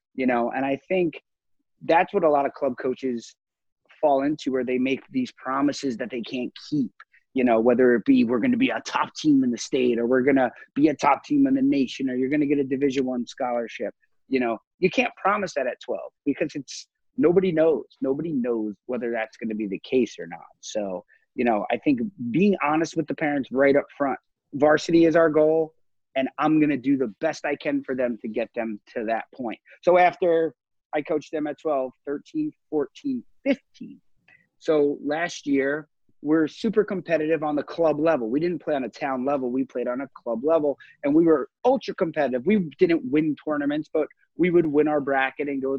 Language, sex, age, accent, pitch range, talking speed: English, male, 30-49, American, 130-180 Hz, 215 wpm